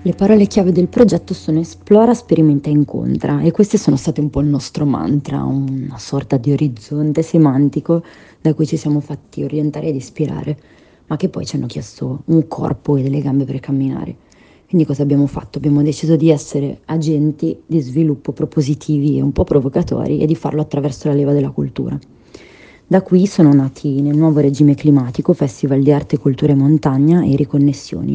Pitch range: 140-155 Hz